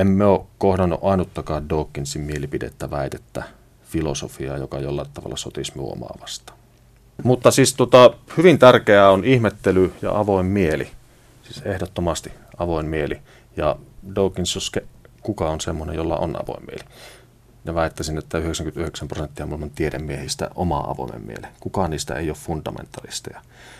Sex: male